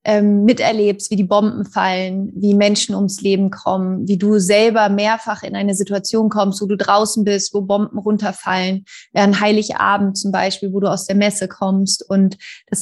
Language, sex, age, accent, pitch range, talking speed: German, female, 30-49, German, 200-225 Hz, 175 wpm